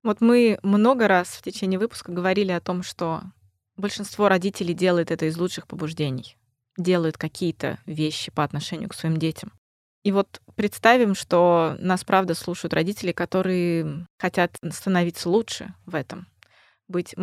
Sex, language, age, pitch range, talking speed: female, Russian, 20-39, 165-200 Hz, 145 wpm